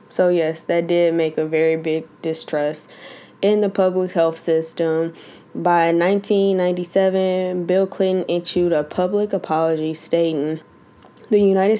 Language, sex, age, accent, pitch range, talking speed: English, female, 10-29, American, 160-180 Hz, 125 wpm